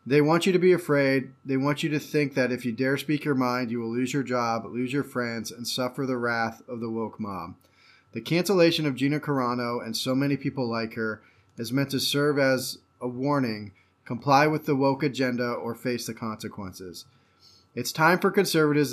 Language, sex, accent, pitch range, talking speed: English, male, American, 115-140 Hz, 205 wpm